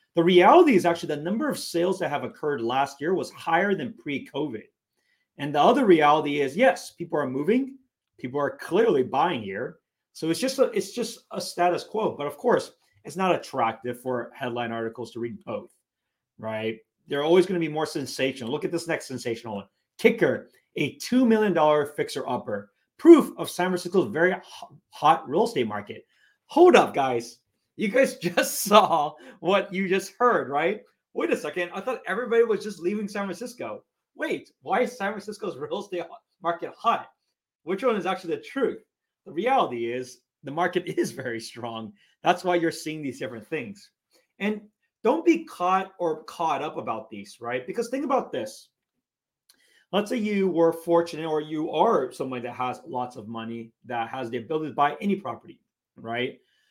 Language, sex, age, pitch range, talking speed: English, male, 30-49, 130-210 Hz, 180 wpm